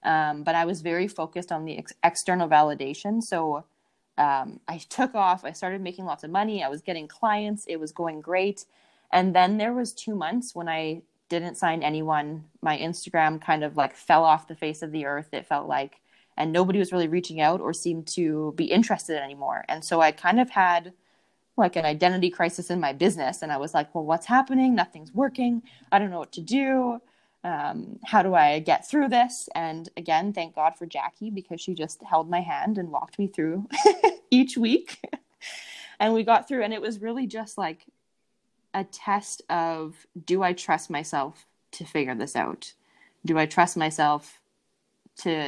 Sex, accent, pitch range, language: female, American, 155-205 Hz, English